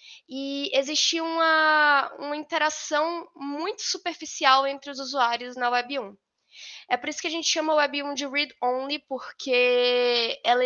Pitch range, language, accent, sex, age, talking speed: 235-285 Hz, Portuguese, Brazilian, female, 10-29, 150 wpm